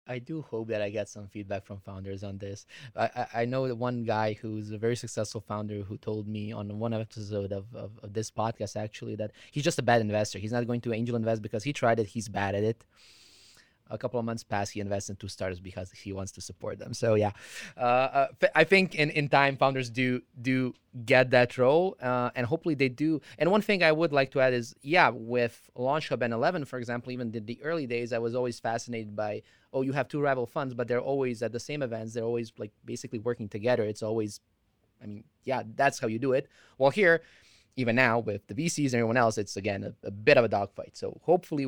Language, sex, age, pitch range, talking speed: Croatian, male, 20-39, 105-130 Hz, 240 wpm